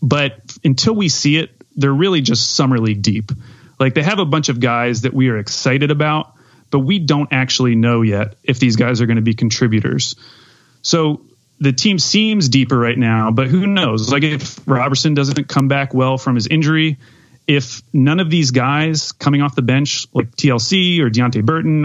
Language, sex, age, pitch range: English, male, 30-49, 120-145 Hz